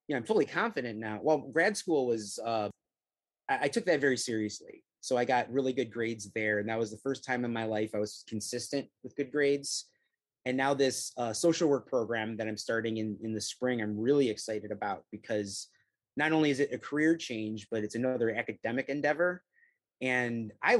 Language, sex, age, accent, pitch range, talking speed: English, male, 30-49, American, 115-145 Hz, 205 wpm